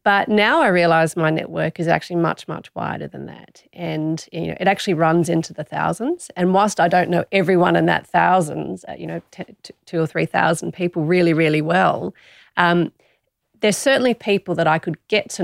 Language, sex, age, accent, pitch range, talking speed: English, female, 30-49, Australian, 165-205 Hz, 195 wpm